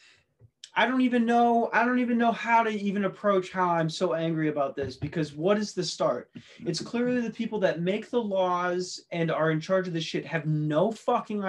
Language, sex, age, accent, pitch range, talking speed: English, male, 20-39, American, 165-220 Hz, 215 wpm